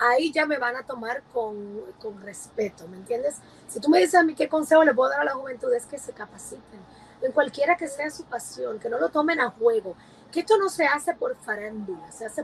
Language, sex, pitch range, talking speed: Spanish, female, 240-350 Hz, 240 wpm